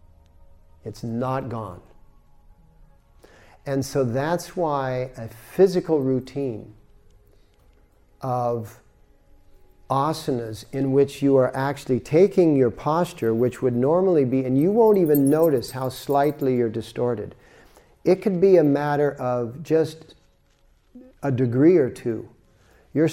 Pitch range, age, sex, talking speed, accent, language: 115-145 Hz, 50-69, male, 115 wpm, American, English